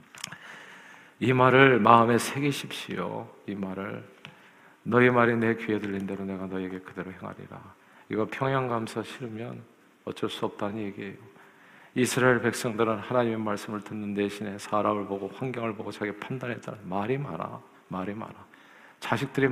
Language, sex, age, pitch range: Korean, male, 40-59, 100-130 Hz